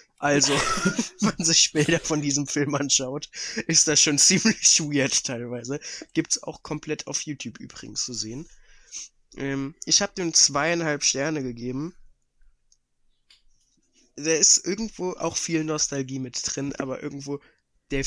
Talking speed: 135 wpm